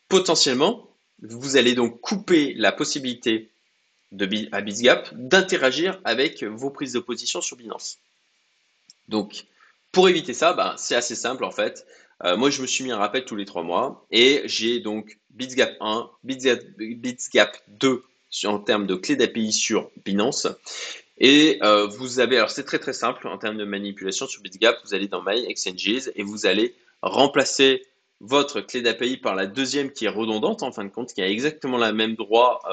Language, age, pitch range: French, 20-39, 110-140 Hz